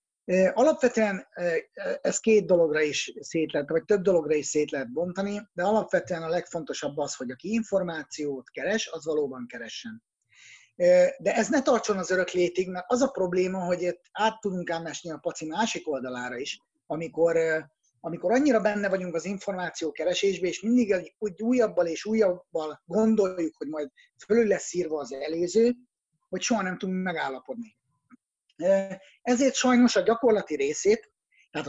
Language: Hungarian